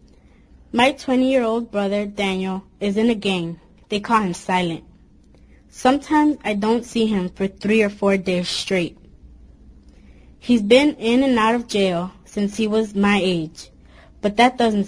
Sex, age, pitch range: female, 20-39, 175-220 Hz